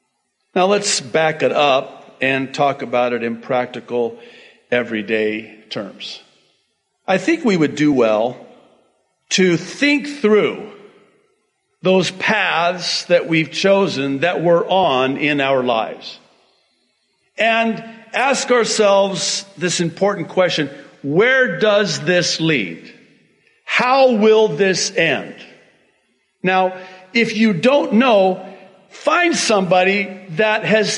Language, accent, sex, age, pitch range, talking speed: English, American, male, 50-69, 175-225 Hz, 110 wpm